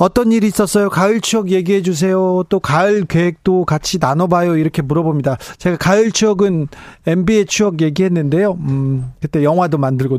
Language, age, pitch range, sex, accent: Korean, 40-59, 145-200 Hz, male, native